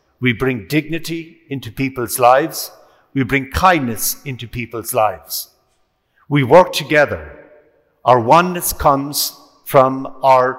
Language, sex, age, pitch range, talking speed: English, male, 60-79, 125-150 Hz, 115 wpm